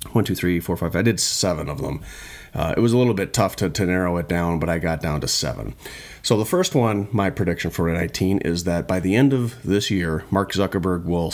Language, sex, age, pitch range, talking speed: English, male, 30-49, 85-100 Hz, 250 wpm